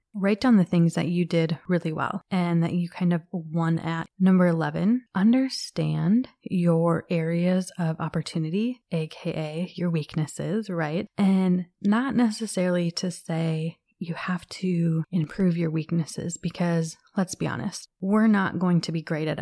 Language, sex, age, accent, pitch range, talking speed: English, female, 20-39, American, 165-200 Hz, 150 wpm